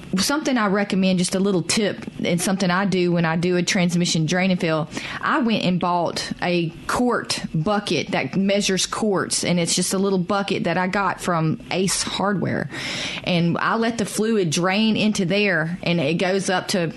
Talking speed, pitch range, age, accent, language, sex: 190 wpm, 170-200 Hz, 30-49, American, English, female